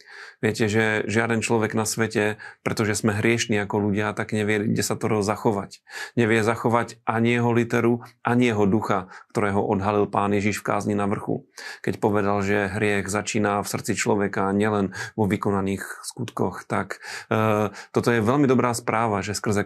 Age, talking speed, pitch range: 30-49, 170 wpm, 105-115 Hz